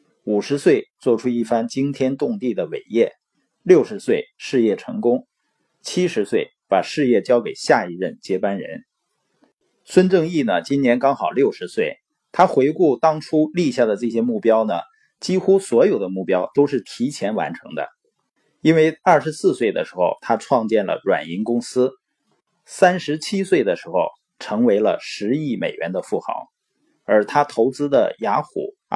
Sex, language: male, Chinese